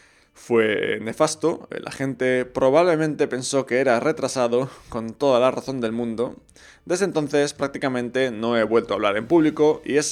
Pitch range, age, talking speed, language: 115-140 Hz, 20-39, 160 wpm, Spanish